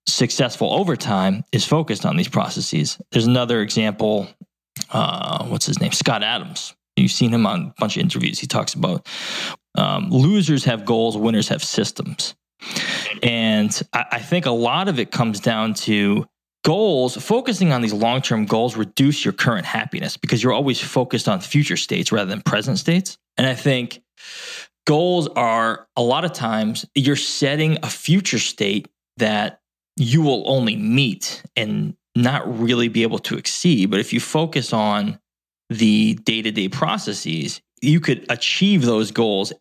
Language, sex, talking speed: English, male, 160 wpm